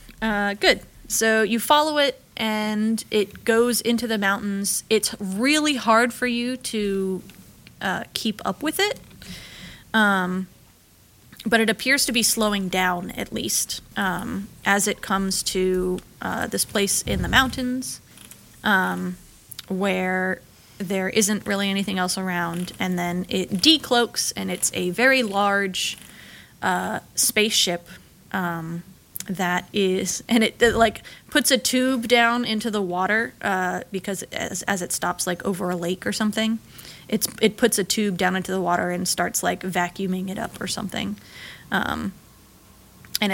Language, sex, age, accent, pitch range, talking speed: English, female, 20-39, American, 185-235 Hz, 150 wpm